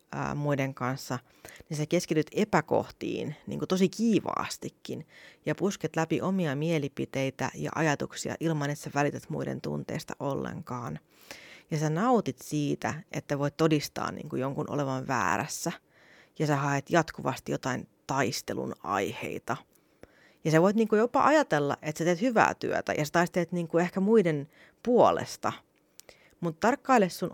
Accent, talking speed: native, 140 wpm